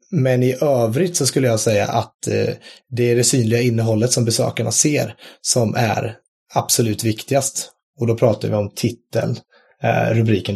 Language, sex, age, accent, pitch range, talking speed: Swedish, male, 30-49, native, 110-140 Hz, 155 wpm